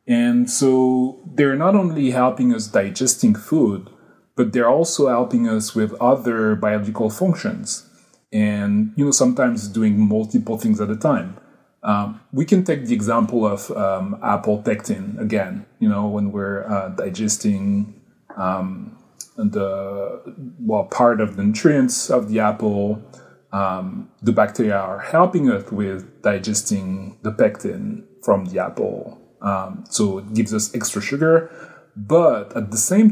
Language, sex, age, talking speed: English, male, 30-49, 145 wpm